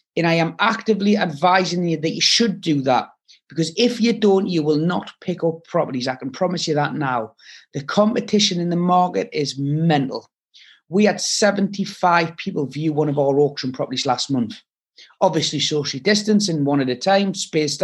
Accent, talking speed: British, 185 wpm